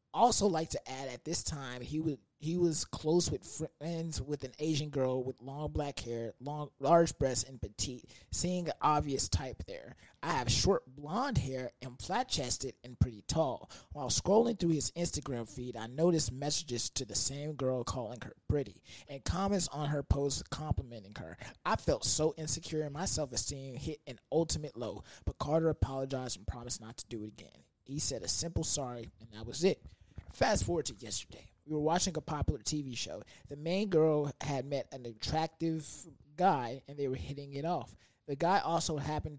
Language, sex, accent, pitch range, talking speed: English, male, American, 125-155 Hz, 190 wpm